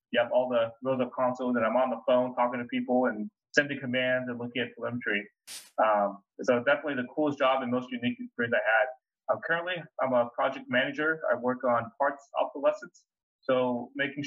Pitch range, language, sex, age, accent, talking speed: 125-165 Hz, English, male, 20-39, American, 200 wpm